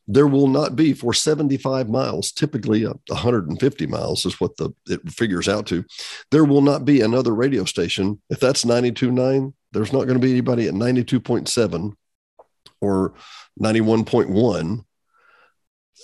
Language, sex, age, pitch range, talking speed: English, male, 50-69, 105-140 Hz, 140 wpm